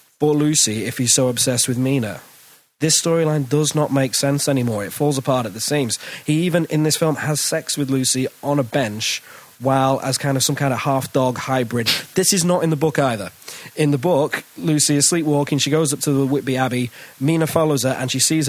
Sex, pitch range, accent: male, 125-155 Hz, British